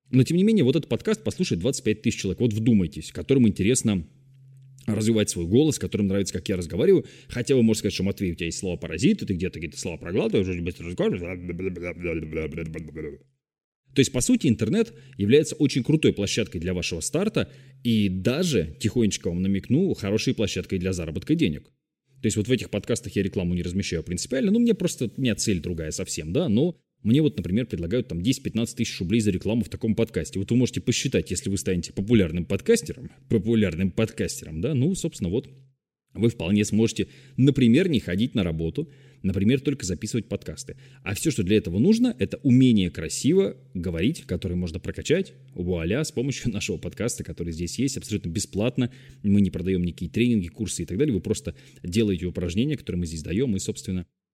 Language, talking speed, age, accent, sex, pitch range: Russian, 180 wpm, 20-39, native, male, 90-130 Hz